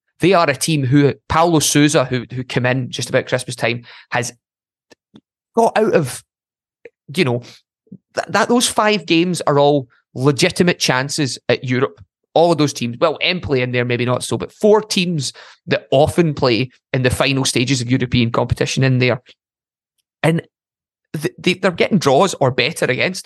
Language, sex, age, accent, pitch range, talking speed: English, male, 20-39, British, 125-150 Hz, 175 wpm